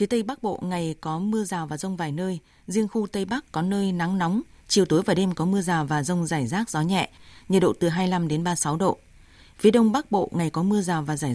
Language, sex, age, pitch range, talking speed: Vietnamese, female, 20-39, 160-195 Hz, 265 wpm